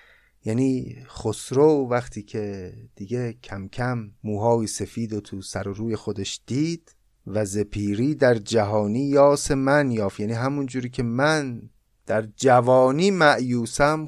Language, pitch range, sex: Persian, 105-150 Hz, male